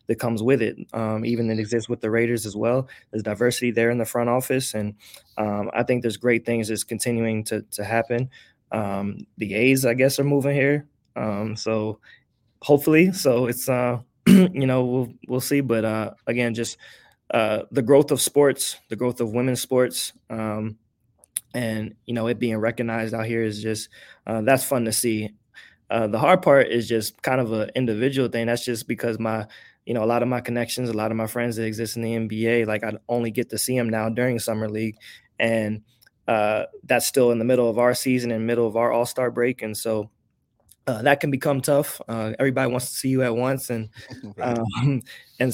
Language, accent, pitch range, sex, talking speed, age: English, American, 110-130 Hz, male, 210 wpm, 20-39